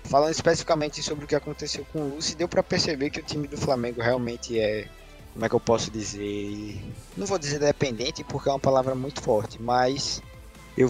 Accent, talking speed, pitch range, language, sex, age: Brazilian, 205 wpm, 110-145 Hz, Portuguese, male, 20-39